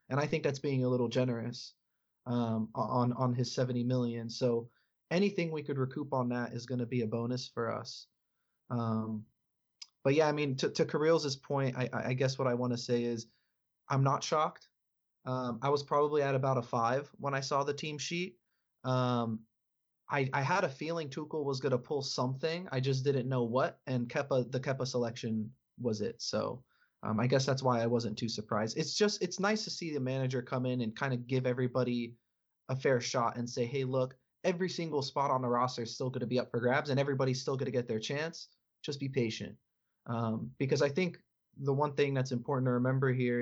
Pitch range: 120-140 Hz